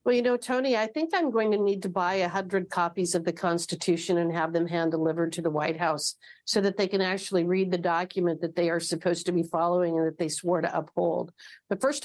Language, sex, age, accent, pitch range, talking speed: English, female, 50-69, American, 180-210 Hz, 245 wpm